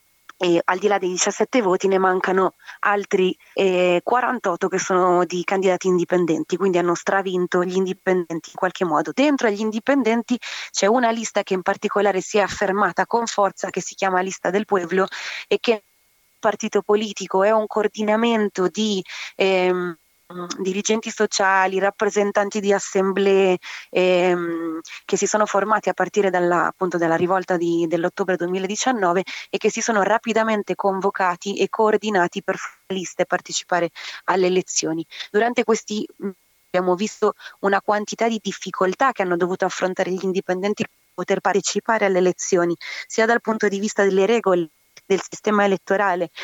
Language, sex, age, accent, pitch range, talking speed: Italian, female, 20-39, native, 180-210 Hz, 150 wpm